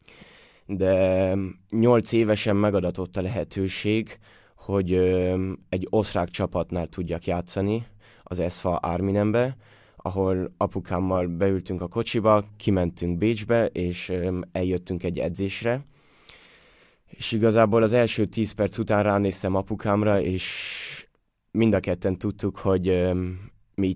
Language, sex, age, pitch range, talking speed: Hungarian, male, 20-39, 90-105 Hz, 105 wpm